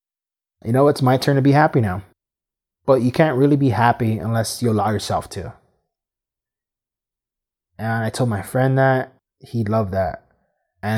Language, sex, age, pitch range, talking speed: English, male, 20-39, 110-135 Hz, 165 wpm